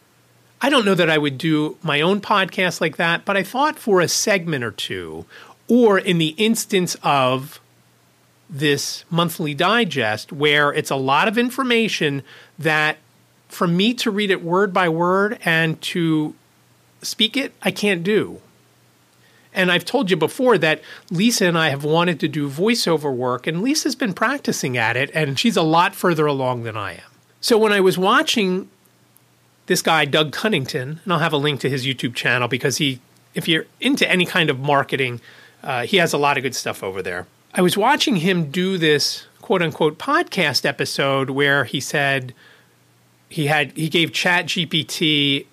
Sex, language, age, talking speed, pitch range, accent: male, English, 40-59, 180 wpm, 140-190 Hz, American